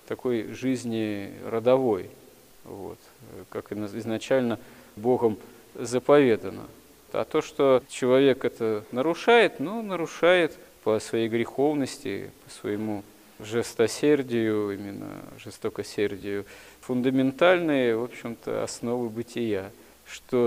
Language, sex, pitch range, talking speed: Russian, male, 105-130 Hz, 90 wpm